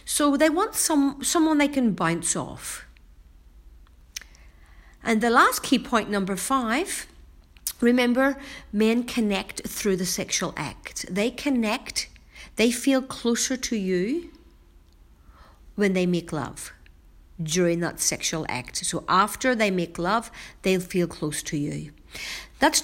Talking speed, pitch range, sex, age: 130 wpm, 160-245 Hz, female, 50-69